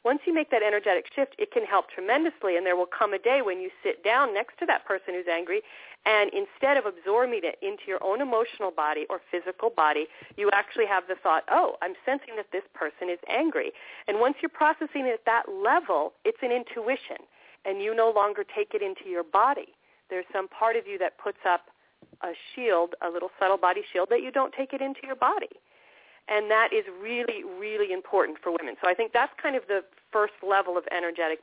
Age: 40-59